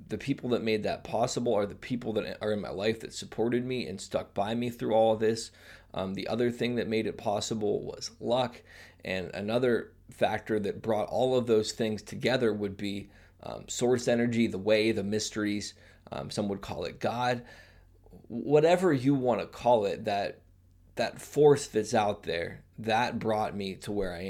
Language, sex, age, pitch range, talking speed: English, male, 20-39, 95-115 Hz, 190 wpm